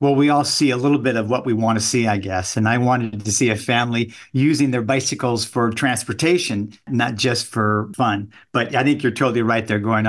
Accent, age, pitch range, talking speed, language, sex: American, 50-69, 110-130 Hz, 230 wpm, English, male